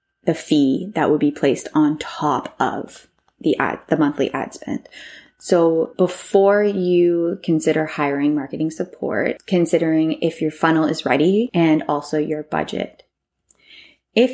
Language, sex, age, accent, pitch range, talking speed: English, female, 20-39, American, 150-185 Hz, 140 wpm